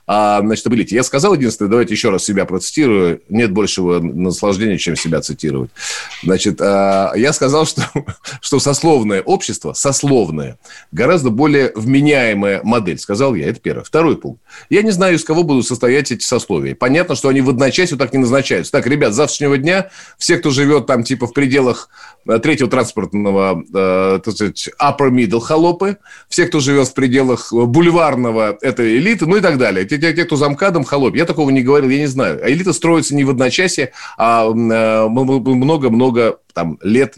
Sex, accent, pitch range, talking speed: male, native, 110-150 Hz, 160 wpm